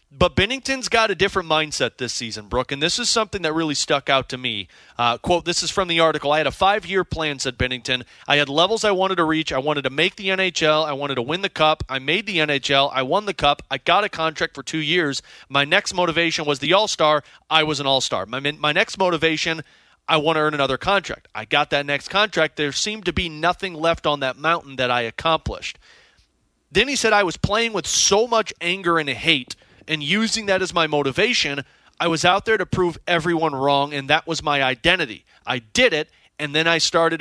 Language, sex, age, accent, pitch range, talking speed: English, male, 30-49, American, 140-185 Hz, 225 wpm